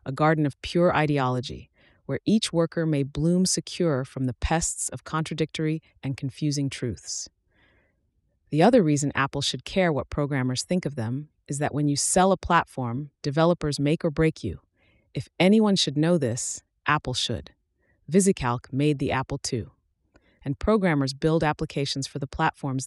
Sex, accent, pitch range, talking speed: female, American, 130-160 Hz, 160 wpm